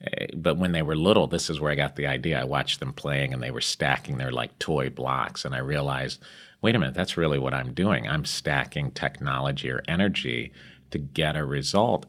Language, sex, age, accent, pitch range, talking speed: English, male, 40-59, American, 70-85 Hz, 220 wpm